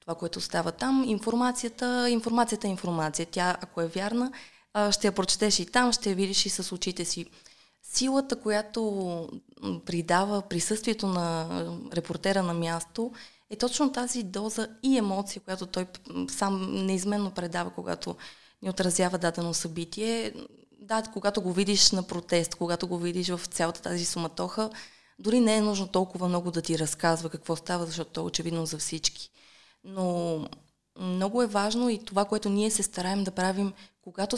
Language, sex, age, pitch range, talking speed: Bulgarian, female, 20-39, 175-210 Hz, 155 wpm